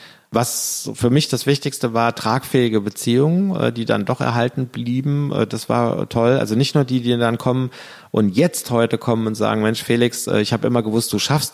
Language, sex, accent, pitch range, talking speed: English, male, German, 100-120 Hz, 190 wpm